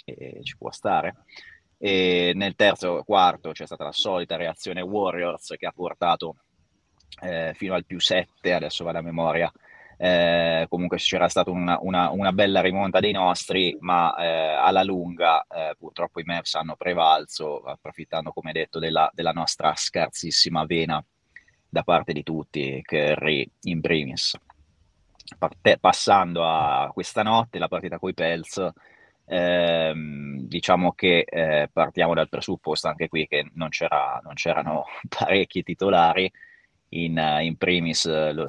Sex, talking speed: male, 145 wpm